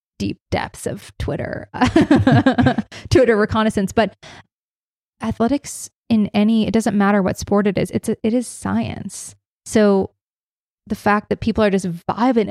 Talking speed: 140 wpm